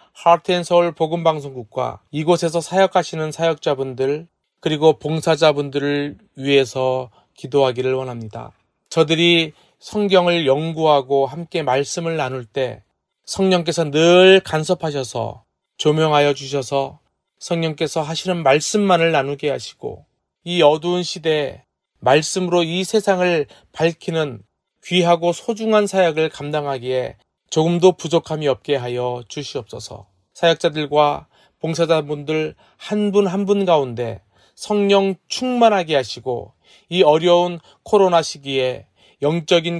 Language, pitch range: Korean, 140-175 Hz